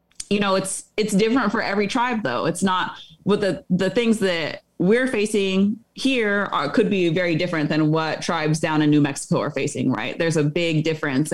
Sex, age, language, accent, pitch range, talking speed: female, 20-39, English, American, 155-195 Hz, 195 wpm